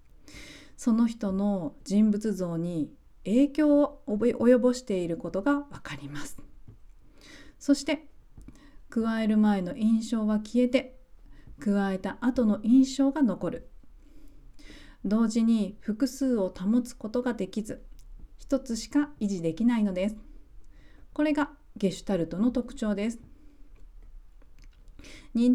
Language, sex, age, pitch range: Japanese, female, 40-59, 200-255 Hz